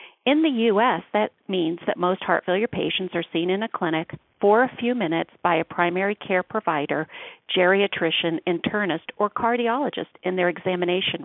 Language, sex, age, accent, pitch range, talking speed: English, female, 50-69, American, 180-260 Hz, 165 wpm